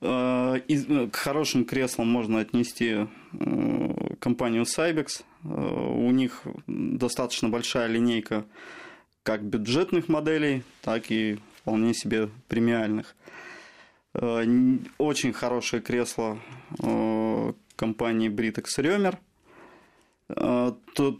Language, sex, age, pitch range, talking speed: Russian, male, 20-39, 115-135 Hz, 75 wpm